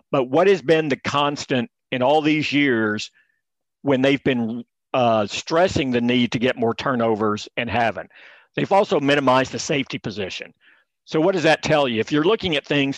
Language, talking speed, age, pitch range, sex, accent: English, 185 wpm, 50-69, 115-145 Hz, male, American